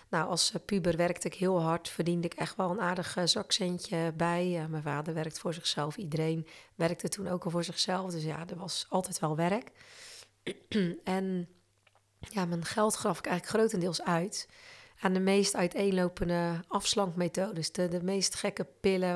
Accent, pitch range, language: Dutch, 170-195 Hz, Dutch